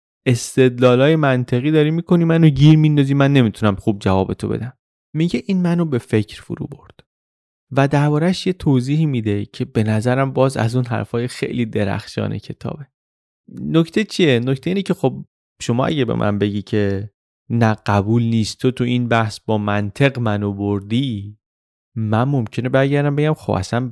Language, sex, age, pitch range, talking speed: Persian, male, 30-49, 110-155 Hz, 160 wpm